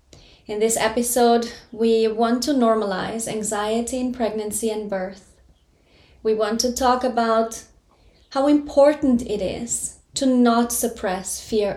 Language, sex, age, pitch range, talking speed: English, female, 20-39, 205-245 Hz, 125 wpm